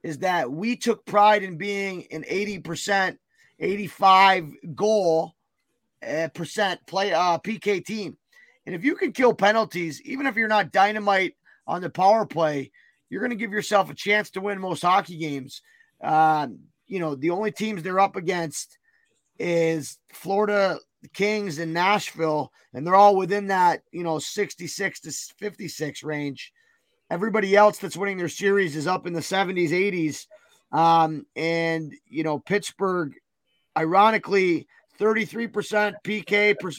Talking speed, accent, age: 145 wpm, American, 30-49